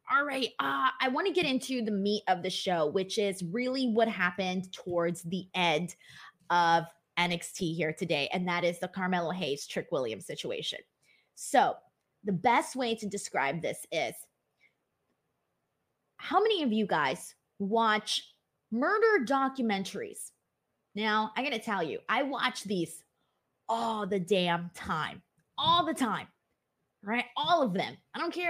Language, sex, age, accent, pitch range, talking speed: English, female, 20-39, American, 195-270 Hz, 150 wpm